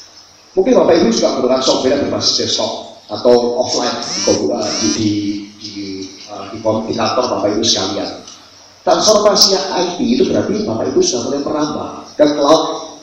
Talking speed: 155 wpm